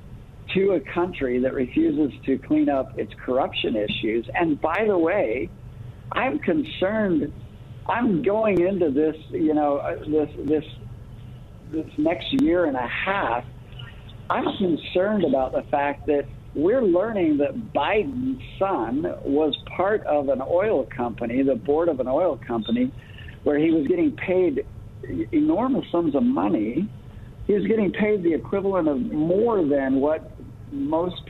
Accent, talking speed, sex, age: American, 140 wpm, male, 60-79